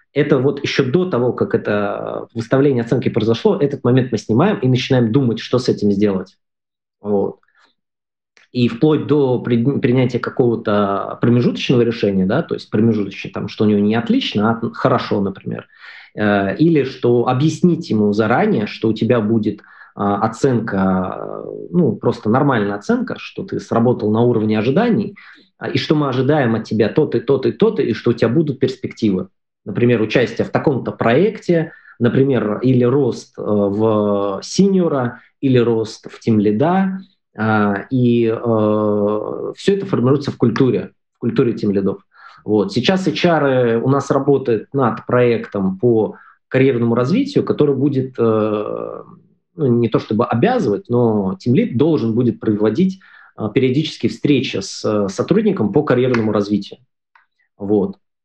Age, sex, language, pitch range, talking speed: 20-39, male, Russian, 105-140 Hz, 145 wpm